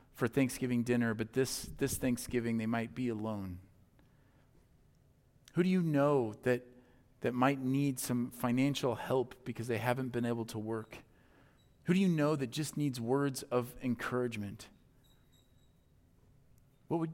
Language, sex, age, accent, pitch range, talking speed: English, male, 40-59, American, 120-140 Hz, 145 wpm